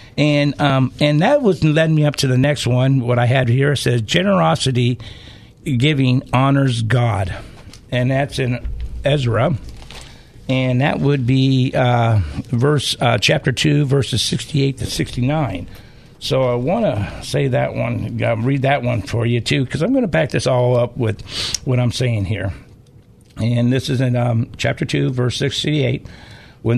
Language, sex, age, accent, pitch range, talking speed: English, male, 60-79, American, 115-140 Hz, 165 wpm